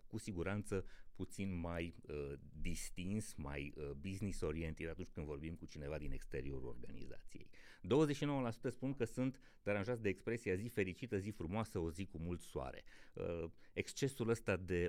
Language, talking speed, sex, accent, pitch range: Romanian, 155 wpm, male, native, 85-115 Hz